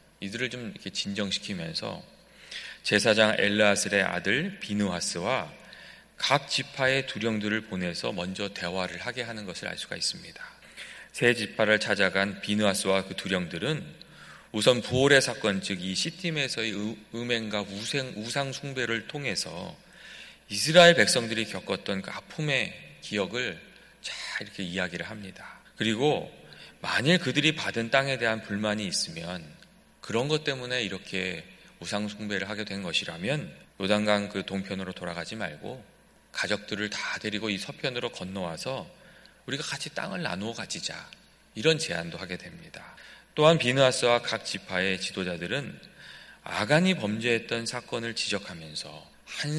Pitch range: 95-135 Hz